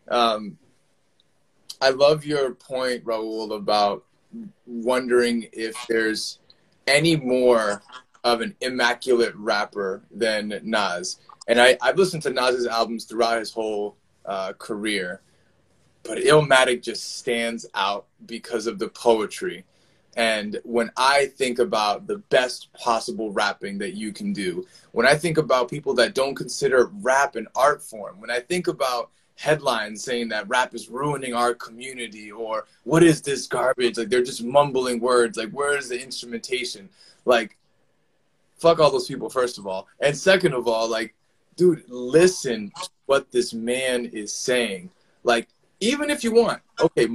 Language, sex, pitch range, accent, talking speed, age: English, male, 115-155 Hz, American, 150 wpm, 20-39